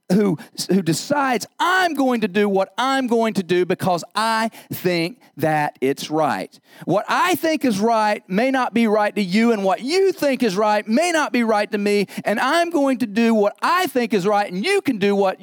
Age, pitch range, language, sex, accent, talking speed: 40-59, 155-210 Hz, English, male, American, 220 wpm